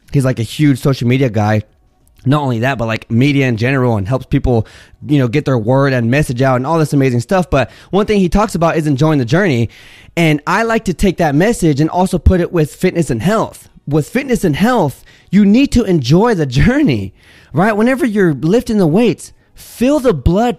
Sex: male